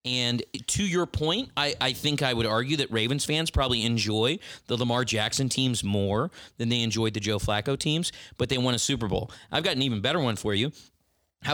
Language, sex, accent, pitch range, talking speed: English, male, American, 115-140 Hz, 220 wpm